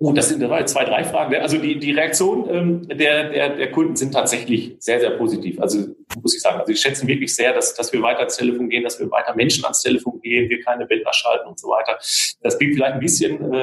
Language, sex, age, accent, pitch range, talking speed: German, male, 40-59, German, 110-145 Hz, 245 wpm